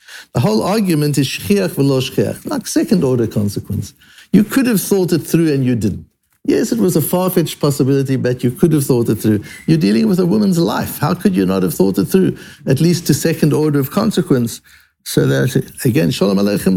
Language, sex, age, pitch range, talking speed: English, male, 60-79, 130-185 Hz, 210 wpm